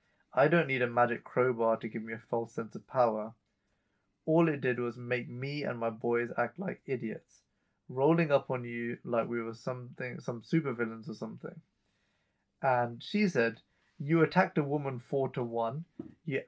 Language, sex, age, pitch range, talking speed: English, male, 20-39, 115-155 Hz, 175 wpm